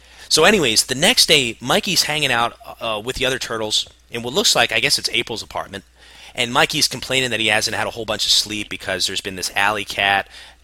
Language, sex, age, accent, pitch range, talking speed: English, male, 30-49, American, 95-130 Hz, 225 wpm